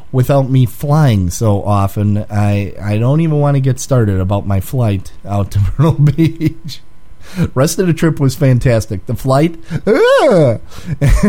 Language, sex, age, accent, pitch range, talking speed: English, male, 30-49, American, 110-150 Hz, 155 wpm